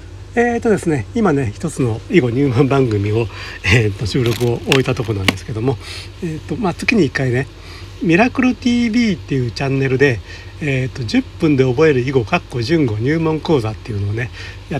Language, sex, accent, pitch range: Japanese, male, native, 105-160 Hz